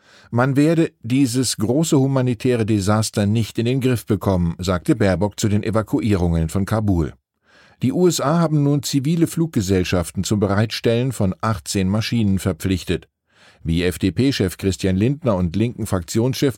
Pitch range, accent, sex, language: 95-130 Hz, German, male, German